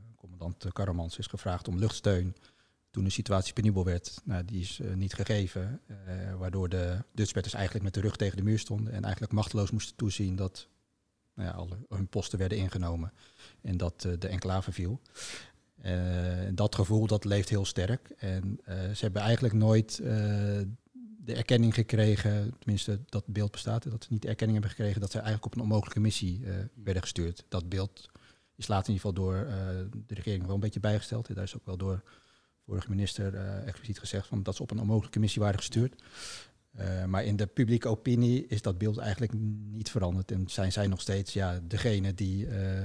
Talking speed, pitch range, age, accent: 200 wpm, 95-110 Hz, 40-59, Dutch